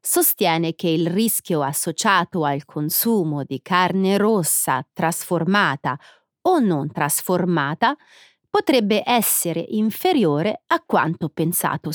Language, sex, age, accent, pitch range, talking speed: Italian, female, 30-49, native, 165-220 Hz, 100 wpm